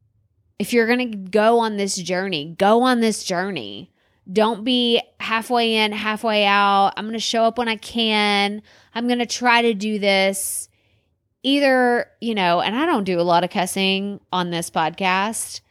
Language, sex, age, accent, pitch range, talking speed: English, female, 20-39, American, 185-260 Hz, 180 wpm